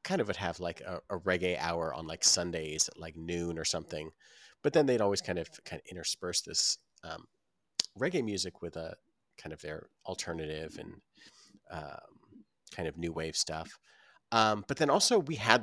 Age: 30-49